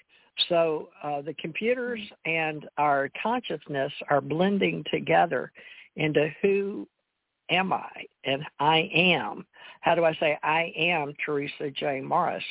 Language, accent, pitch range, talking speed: English, American, 150-180 Hz, 125 wpm